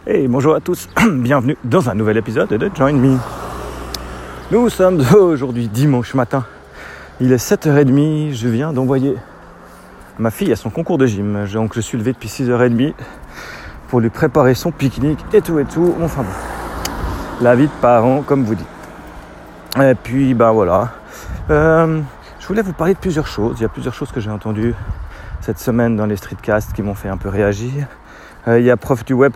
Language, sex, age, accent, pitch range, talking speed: French, male, 40-59, French, 110-150 Hz, 190 wpm